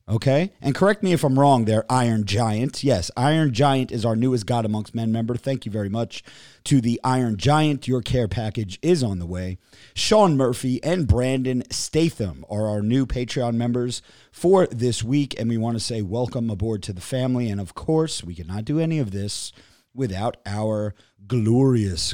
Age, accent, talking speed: 30-49, American, 190 wpm